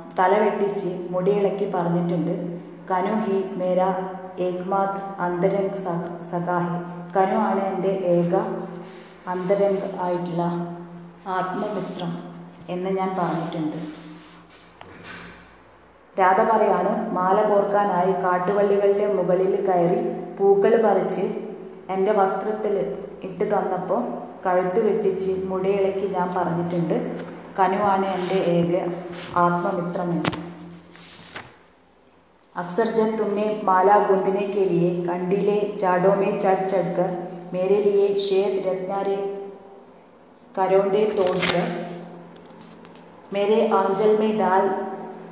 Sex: female